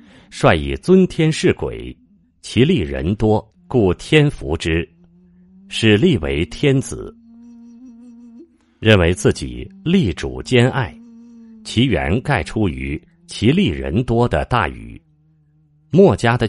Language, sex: Chinese, male